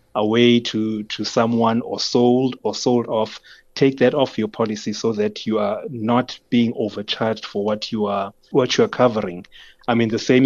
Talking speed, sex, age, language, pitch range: 190 wpm, male, 30-49, English, 110-130 Hz